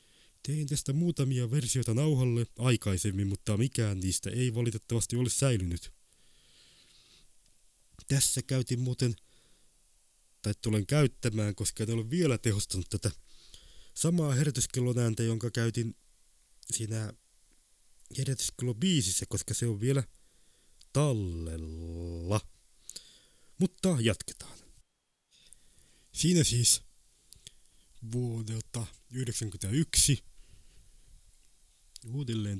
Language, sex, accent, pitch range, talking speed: Finnish, male, native, 95-120 Hz, 80 wpm